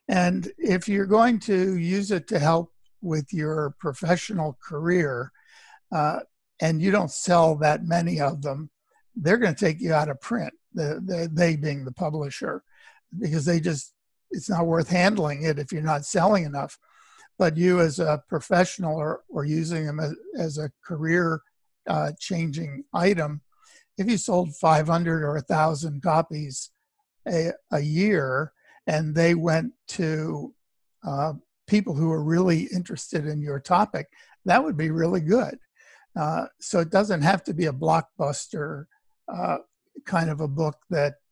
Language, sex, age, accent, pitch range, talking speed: English, male, 60-79, American, 155-190 Hz, 155 wpm